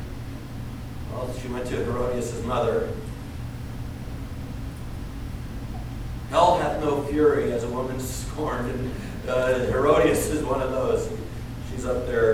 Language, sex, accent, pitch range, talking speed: English, male, American, 115-130 Hz, 105 wpm